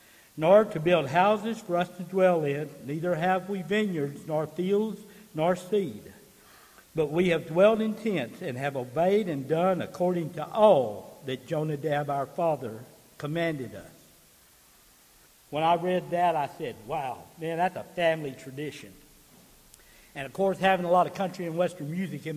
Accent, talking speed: American, 165 wpm